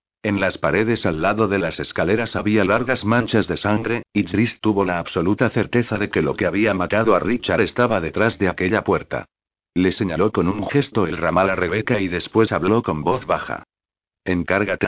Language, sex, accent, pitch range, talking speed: Spanish, male, Spanish, 95-110 Hz, 195 wpm